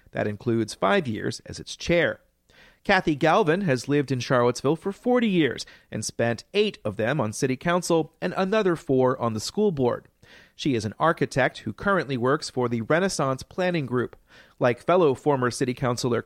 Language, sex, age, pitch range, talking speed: English, male, 40-59, 120-175 Hz, 175 wpm